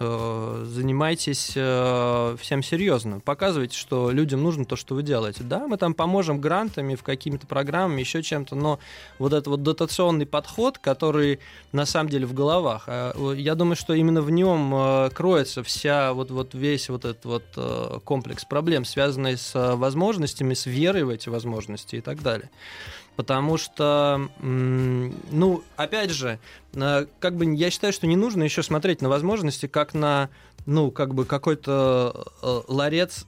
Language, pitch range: Russian, 130-160 Hz